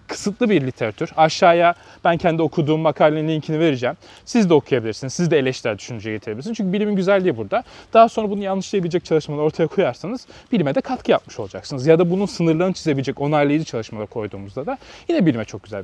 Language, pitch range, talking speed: Turkish, 130-195 Hz, 180 wpm